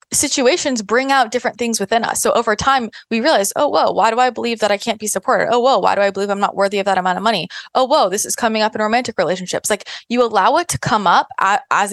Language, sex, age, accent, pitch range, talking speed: English, female, 20-39, American, 205-265 Hz, 270 wpm